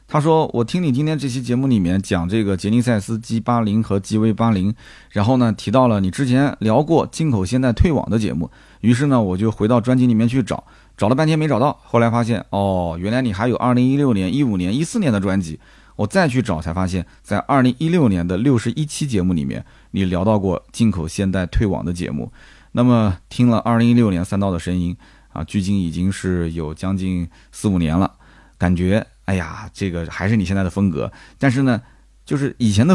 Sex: male